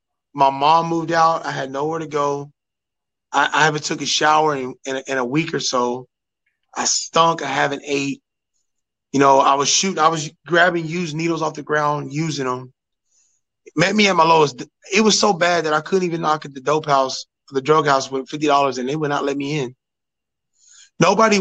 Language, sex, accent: English, male, American